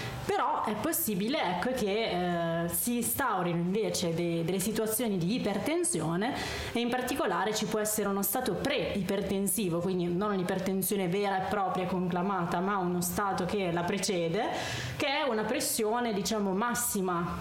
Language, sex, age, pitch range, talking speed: Italian, female, 20-39, 180-220 Hz, 150 wpm